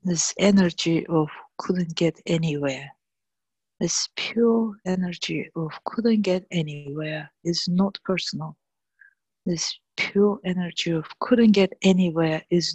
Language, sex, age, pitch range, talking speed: English, female, 50-69, 150-195 Hz, 115 wpm